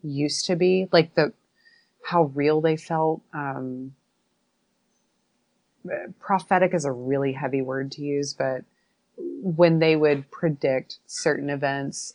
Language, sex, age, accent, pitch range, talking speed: English, female, 30-49, American, 135-170 Hz, 125 wpm